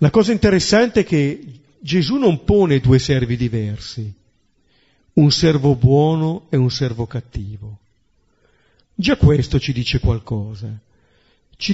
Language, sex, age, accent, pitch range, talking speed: Italian, male, 50-69, native, 120-175 Hz, 125 wpm